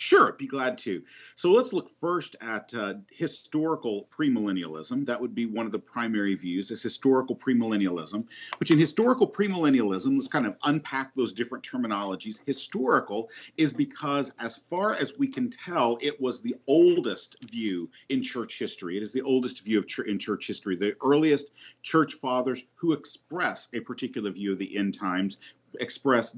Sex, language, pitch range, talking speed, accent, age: male, English, 105-145 Hz, 170 wpm, American, 40-59